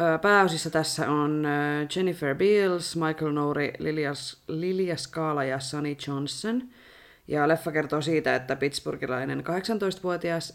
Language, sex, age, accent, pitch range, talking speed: Finnish, female, 30-49, native, 140-190 Hz, 115 wpm